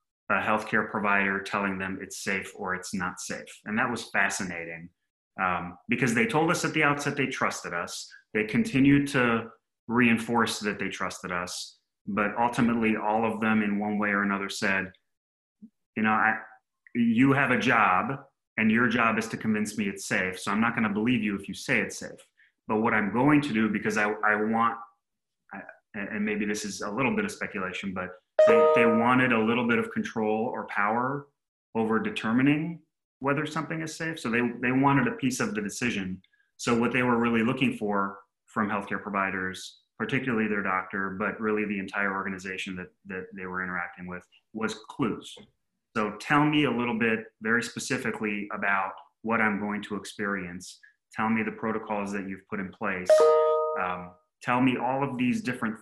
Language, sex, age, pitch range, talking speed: English, male, 30-49, 100-130 Hz, 185 wpm